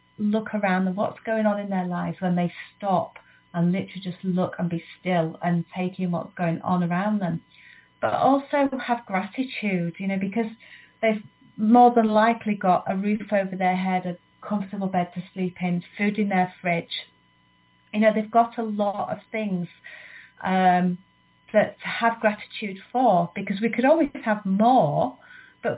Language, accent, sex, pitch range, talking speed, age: English, British, female, 180-215 Hz, 175 wpm, 30-49